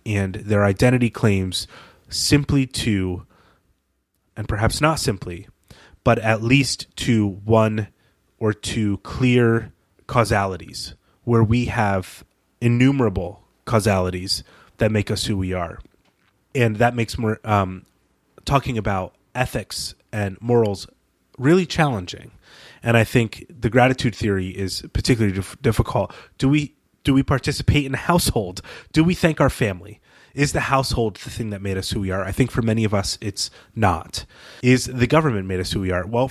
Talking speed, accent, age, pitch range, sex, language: 150 wpm, American, 30-49, 100-125 Hz, male, English